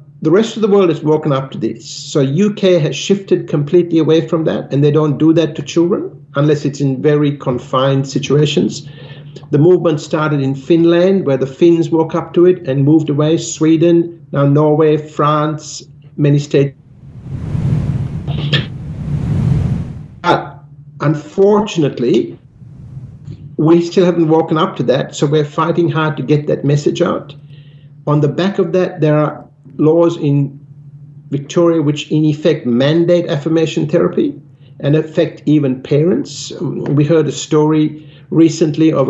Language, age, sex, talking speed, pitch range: English, 60-79, male, 145 wpm, 145-165 Hz